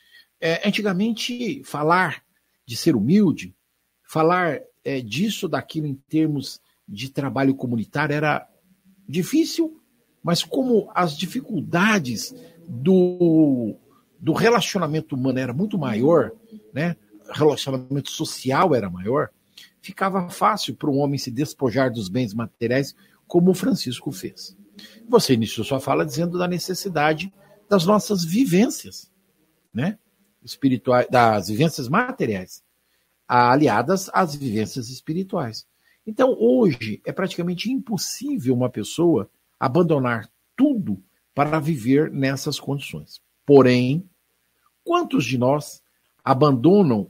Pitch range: 130-195 Hz